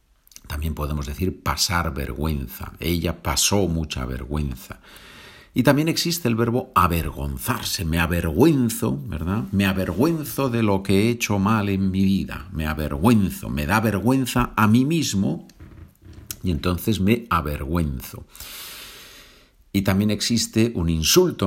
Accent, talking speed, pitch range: Spanish, 130 wpm, 80-110 Hz